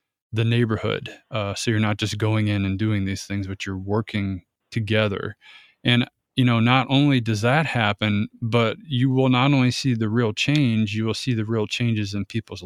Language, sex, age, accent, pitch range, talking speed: English, male, 20-39, American, 110-125 Hz, 200 wpm